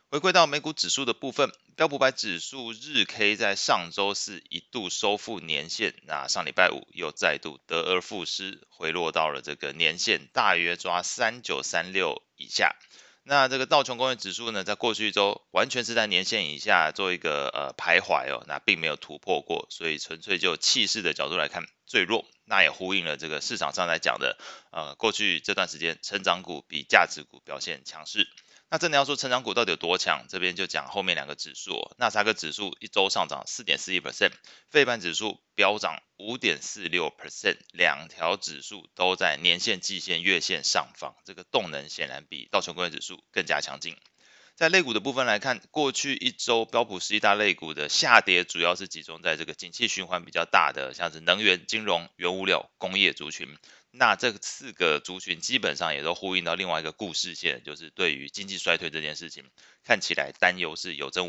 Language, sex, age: Chinese, male, 30-49